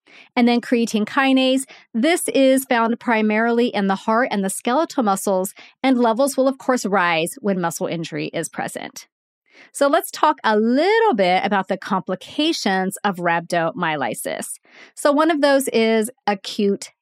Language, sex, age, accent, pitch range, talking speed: English, female, 30-49, American, 190-255 Hz, 150 wpm